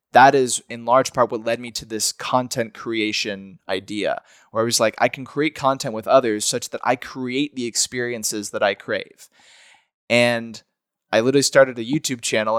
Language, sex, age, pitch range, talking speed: English, male, 20-39, 115-135 Hz, 185 wpm